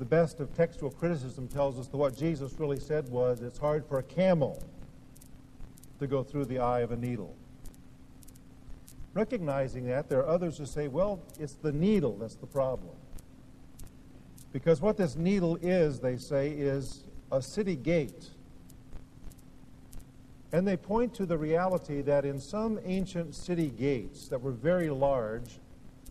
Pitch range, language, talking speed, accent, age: 135-165 Hz, English, 155 wpm, American, 50-69